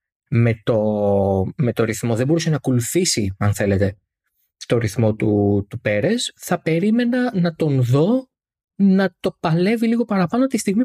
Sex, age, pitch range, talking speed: male, 20-39, 105-155 Hz, 155 wpm